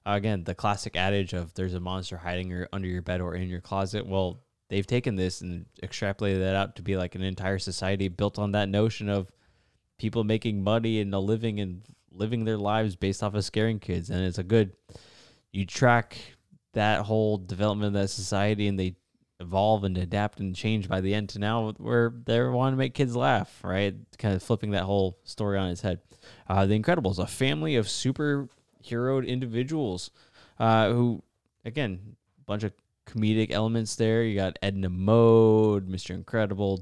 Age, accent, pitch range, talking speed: 20-39, American, 95-110 Hz, 185 wpm